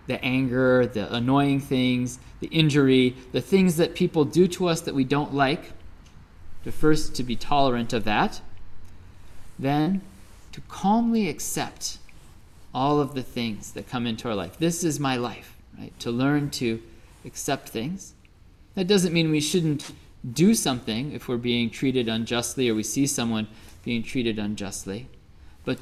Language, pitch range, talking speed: English, 115-145 Hz, 160 wpm